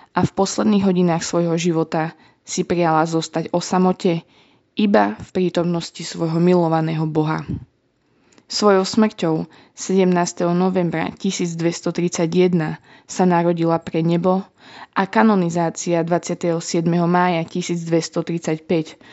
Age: 20-39